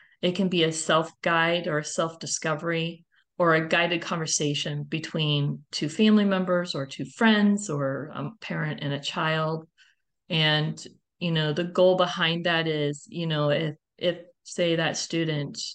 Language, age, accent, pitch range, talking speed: English, 40-59, American, 160-190 Hz, 150 wpm